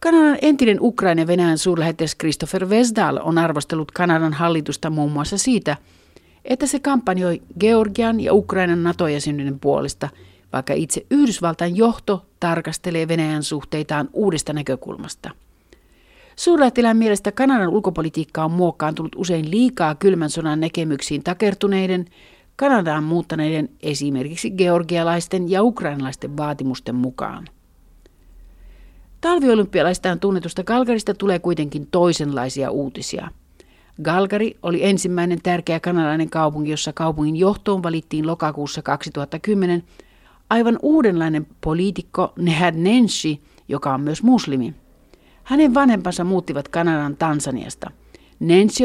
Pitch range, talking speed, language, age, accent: 150-205 Hz, 105 wpm, Finnish, 50-69, native